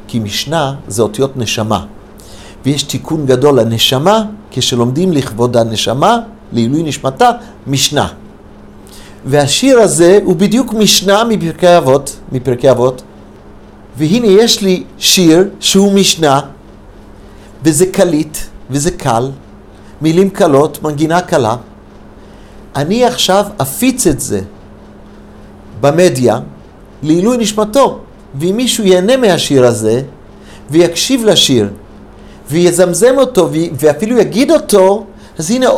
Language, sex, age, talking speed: Hebrew, male, 50-69, 100 wpm